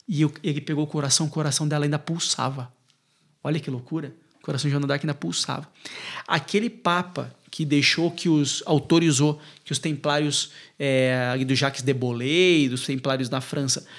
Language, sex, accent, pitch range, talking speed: Portuguese, male, Brazilian, 145-175 Hz, 165 wpm